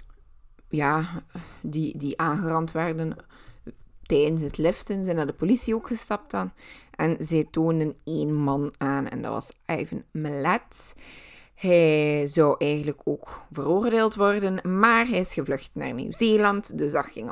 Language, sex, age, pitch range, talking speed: Dutch, female, 20-39, 155-195 Hz, 140 wpm